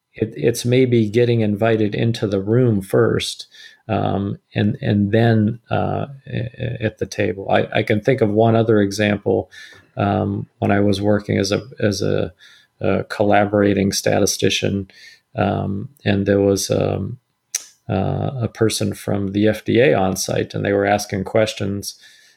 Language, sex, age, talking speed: English, male, 40-59, 150 wpm